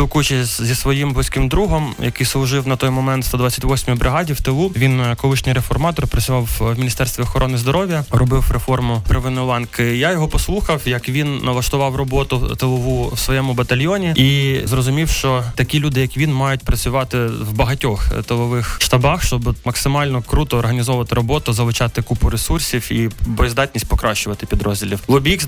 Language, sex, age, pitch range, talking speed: Ukrainian, male, 20-39, 120-140 Hz, 150 wpm